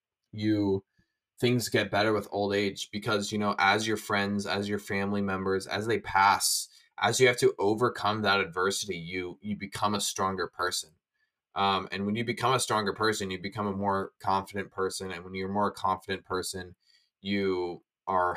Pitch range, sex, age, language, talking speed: 95-110 Hz, male, 20-39, English, 180 wpm